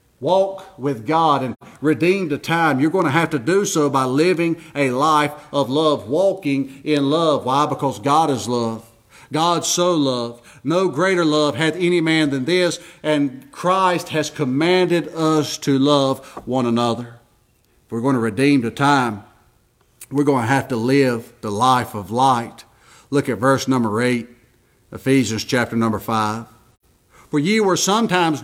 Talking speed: 165 wpm